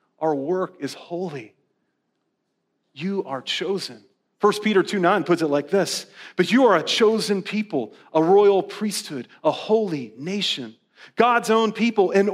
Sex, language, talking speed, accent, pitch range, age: male, English, 145 wpm, American, 150-190 Hz, 30-49